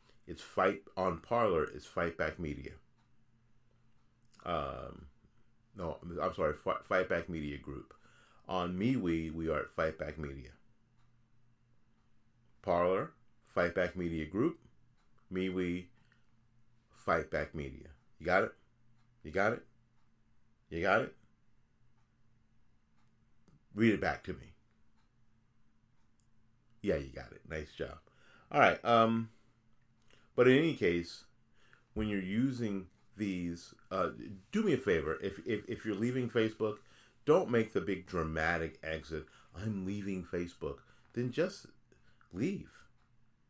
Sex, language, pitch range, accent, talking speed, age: male, English, 95-120 Hz, American, 125 wpm, 30-49